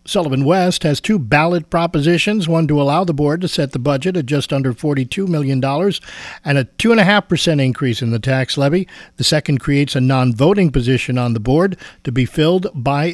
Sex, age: male, 50-69